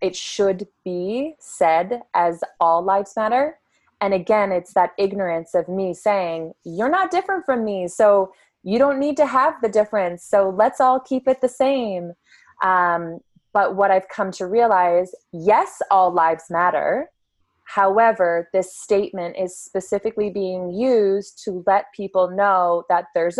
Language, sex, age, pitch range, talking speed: English, female, 20-39, 175-215 Hz, 155 wpm